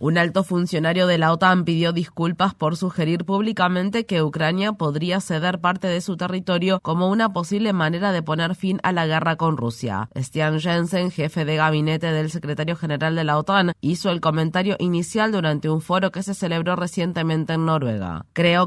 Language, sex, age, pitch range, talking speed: Spanish, female, 20-39, 160-190 Hz, 180 wpm